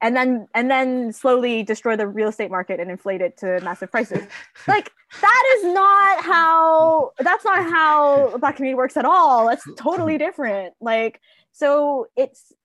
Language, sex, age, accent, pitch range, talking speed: English, female, 20-39, American, 190-265 Hz, 165 wpm